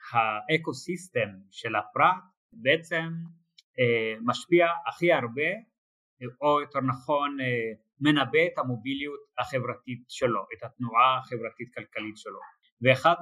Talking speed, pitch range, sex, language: 110 wpm, 120-155 Hz, male, Hebrew